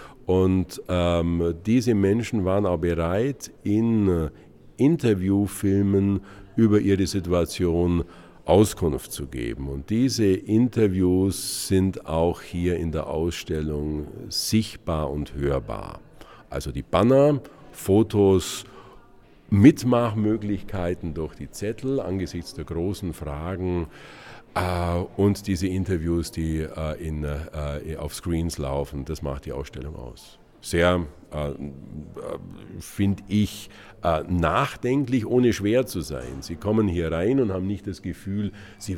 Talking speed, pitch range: 115 wpm, 80-100 Hz